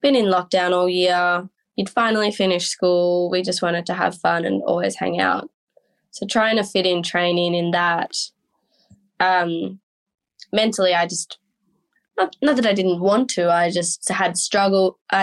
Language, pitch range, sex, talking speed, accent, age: English, 175-200 Hz, female, 165 wpm, Australian, 10-29